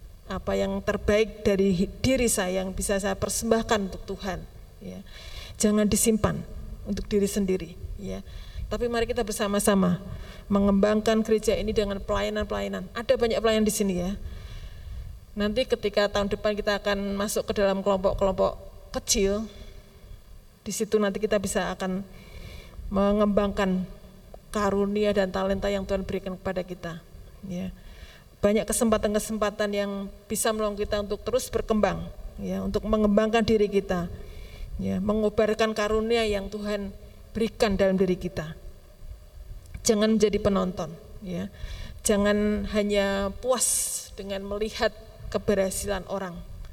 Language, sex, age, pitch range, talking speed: Indonesian, female, 30-49, 185-210 Hz, 120 wpm